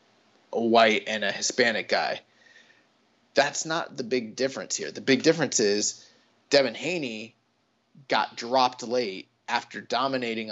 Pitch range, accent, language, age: 120-145 Hz, American, English, 20-39